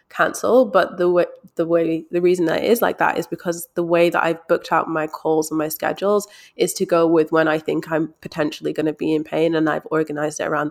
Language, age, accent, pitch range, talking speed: English, 20-39, British, 160-180 Hz, 250 wpm